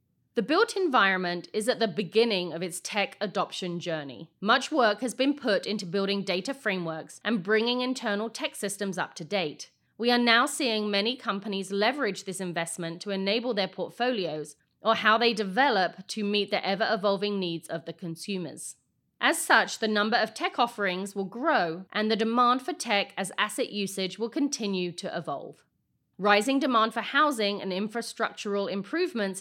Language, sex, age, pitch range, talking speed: English, female, 30-49, 190-245 Hz, 165 wpm